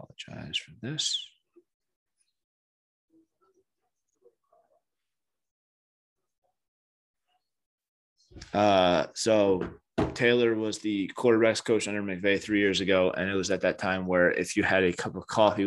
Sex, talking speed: male, 110 wpm